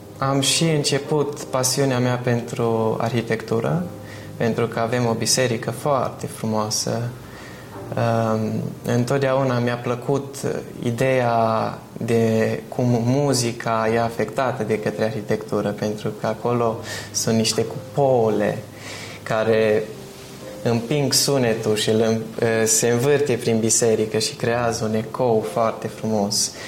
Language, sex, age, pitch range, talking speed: Romanian, male, 20-39, 115-135 Hz, 105 wpm